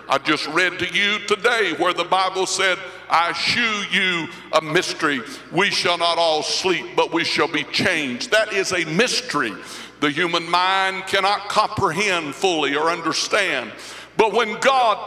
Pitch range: 180-245 Hz